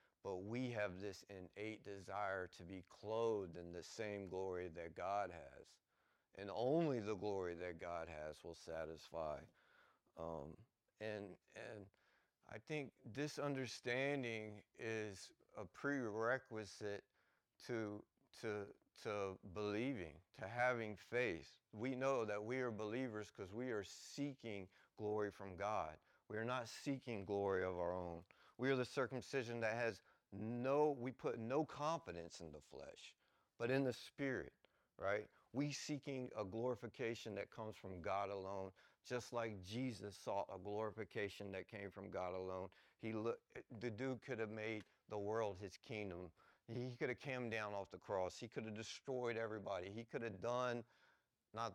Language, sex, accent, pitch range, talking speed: English, male, American, 95-120 Hz, 150 wpm